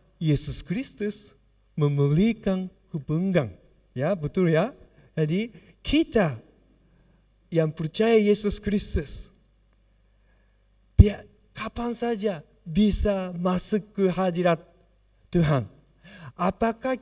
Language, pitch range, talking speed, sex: Indonesian, 170-270 Hz, 75 wpm, male